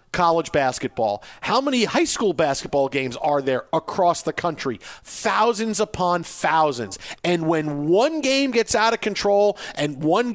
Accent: American